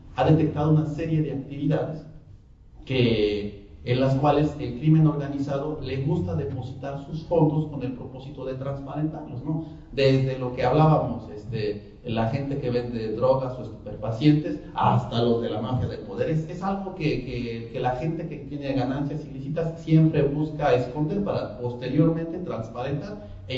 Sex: male